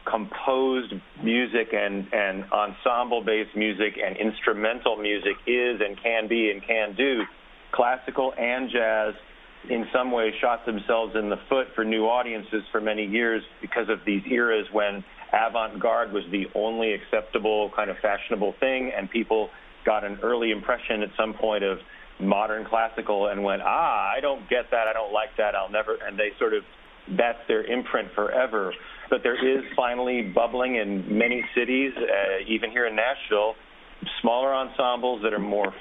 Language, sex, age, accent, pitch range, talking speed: English, male, 40-59, American, 105-125 Hz, 165 wpm